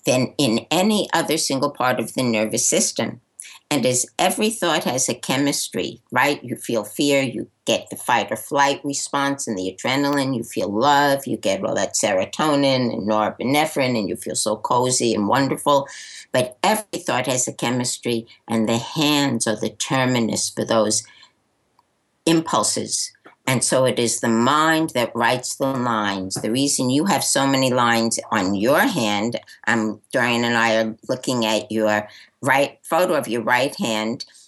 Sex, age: female, 60-79